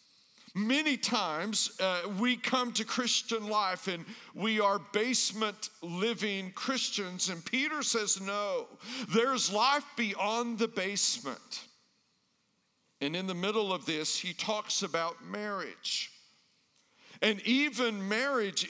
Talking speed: 115 wpm